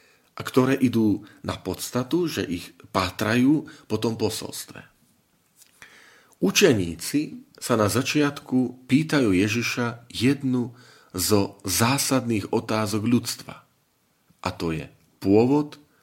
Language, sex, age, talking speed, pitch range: Slovak, male, 40-59, 95 wpm, 95-130 Hz